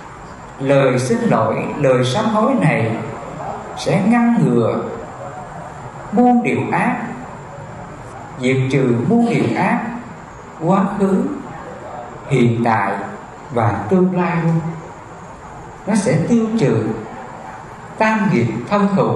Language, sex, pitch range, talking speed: English, male, 120-200 Hz, 105 wpm